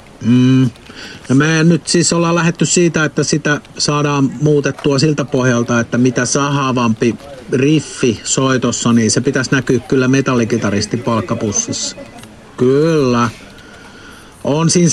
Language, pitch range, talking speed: Finnish, 115-150 Hz, 115 wpm